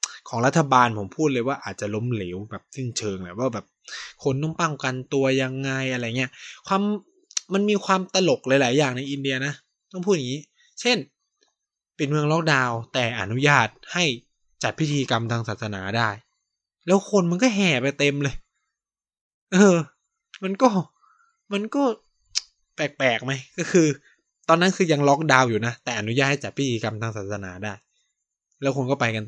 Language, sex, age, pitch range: Thai, male, 20-39, 115-170 Hz